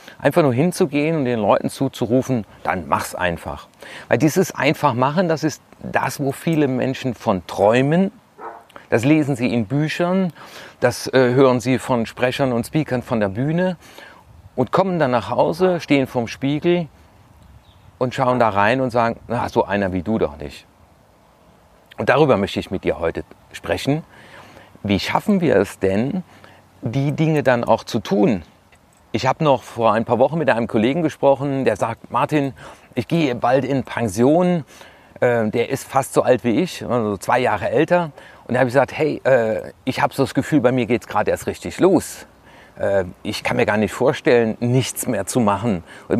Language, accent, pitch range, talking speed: German, German, 115-150 Hz, 175 wpm